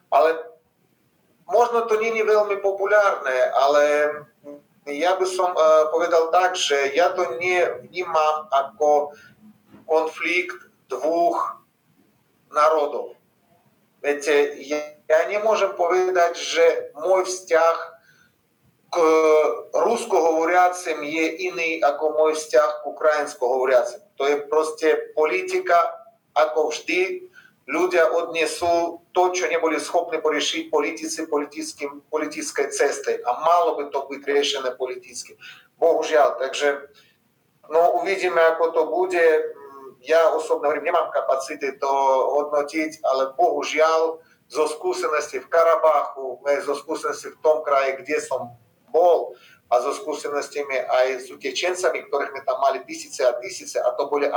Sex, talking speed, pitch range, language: male, 125 wpm, 145-185 Hz, Czech